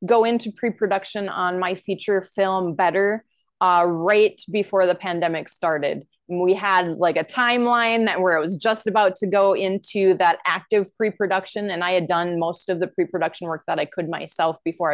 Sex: female